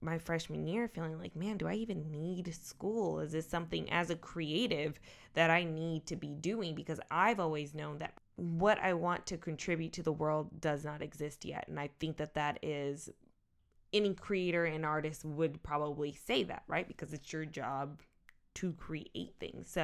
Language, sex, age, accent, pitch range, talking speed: English, female, 20-39, American, 155-180 Hz, 190 wpm